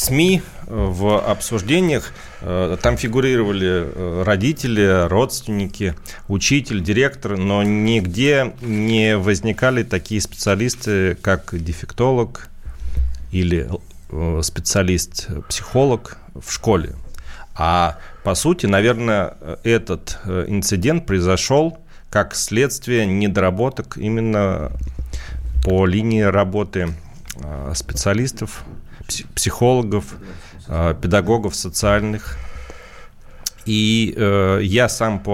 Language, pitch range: Russian, 90-115 Hz